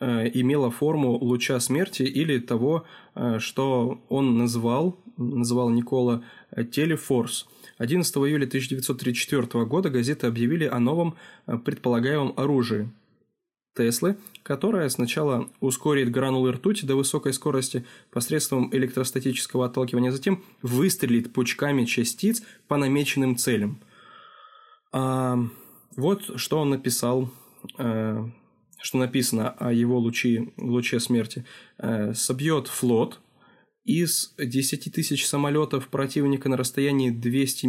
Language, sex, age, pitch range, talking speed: Russian, male, 20-39, 120-145 Hz, 105 wpm